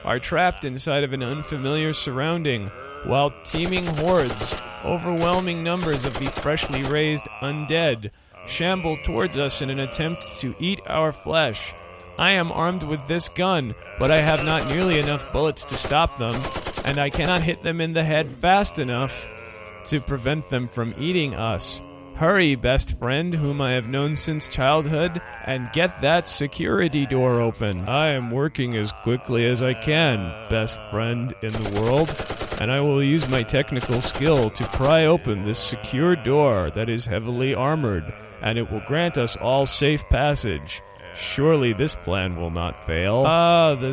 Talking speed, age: 165 wpm, 40-59